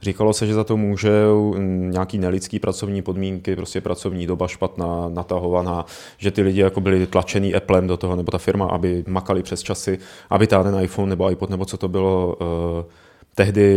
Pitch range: 95-110 Hz